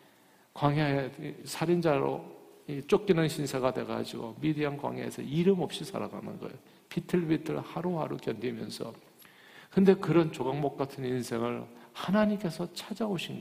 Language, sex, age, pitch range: Korean, male, 50-69, 135-195 Hz